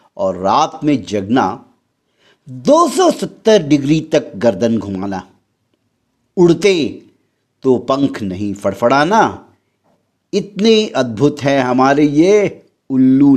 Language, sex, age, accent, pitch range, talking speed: Hindi, male, 50-69, native, 125-170 Hz, 90 wpm